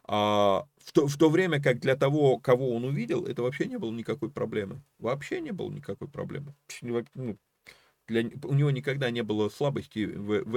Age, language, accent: 30-49, Russian, native